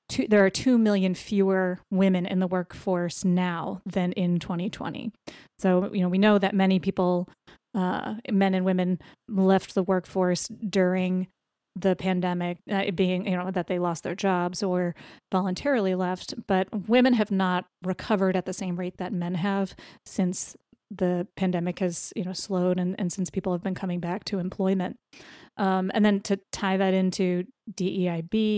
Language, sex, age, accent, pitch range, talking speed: English, female, 30-49, American, 180-200 Hz, 170 wpm